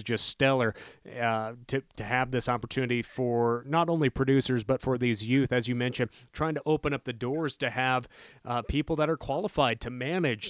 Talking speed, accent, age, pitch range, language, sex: 195 wpm, American, 30-49, 125-155 Hz, English, male